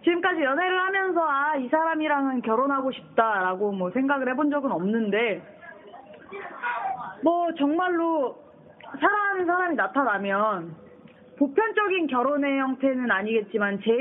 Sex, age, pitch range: female, 20-39, 200-280 Hz